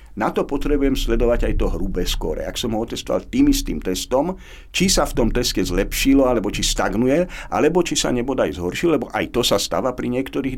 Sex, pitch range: male, 100-140 Hz